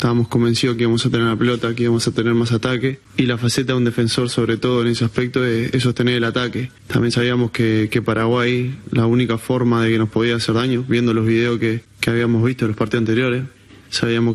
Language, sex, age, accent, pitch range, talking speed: Spanish, male, 20-39, Argentinian, 115-125 Hz, 230 wpm